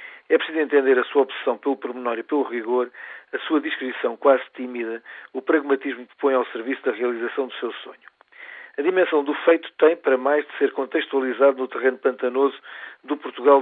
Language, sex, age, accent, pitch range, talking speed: Portuguese, male, 40-59, Portuguese, 130-150 Hz, 185 wpm